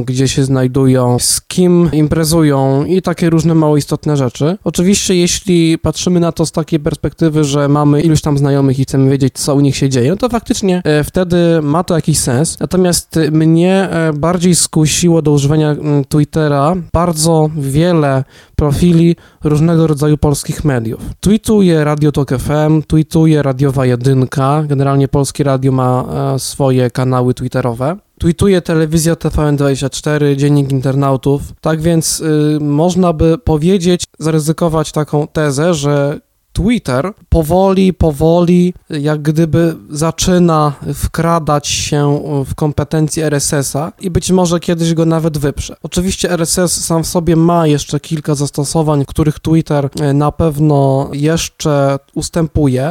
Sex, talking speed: male, 130 wpm